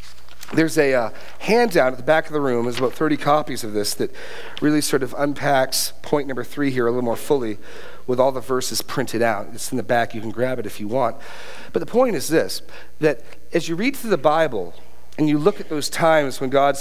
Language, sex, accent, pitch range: English, male, American, 110-160 Hz